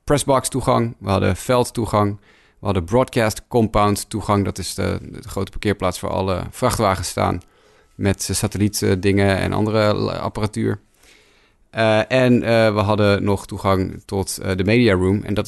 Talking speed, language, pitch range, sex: 150 wpm, Dutch, 95-115 Hz, male